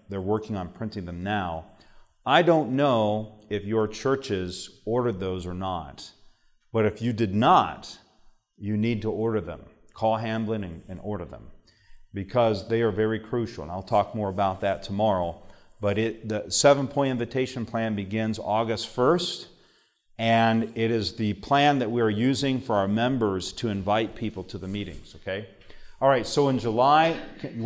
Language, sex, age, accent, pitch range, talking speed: English, male, 40-59, American, 100-125 Hz, 170 wpm